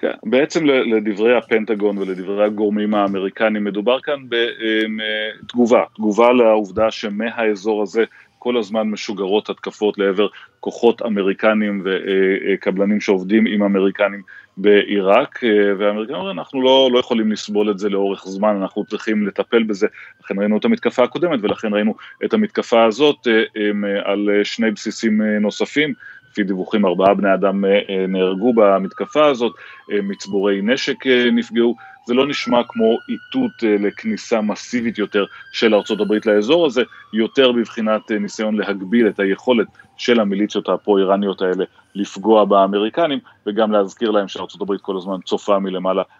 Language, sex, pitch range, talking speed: Hebrew, male, 100-120 Hz, 130 wpm